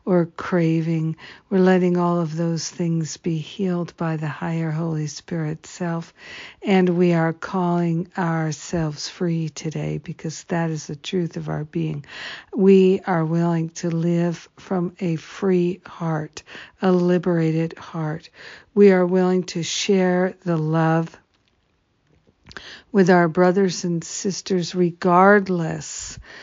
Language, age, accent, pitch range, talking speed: English, 60-79, American, 165-185 Hz, 125 wpm